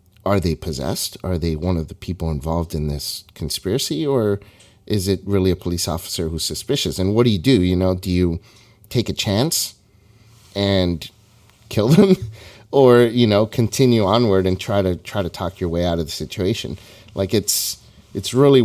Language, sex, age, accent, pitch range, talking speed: English, male, 30-49, American, 90-110 Hz, 185 wpm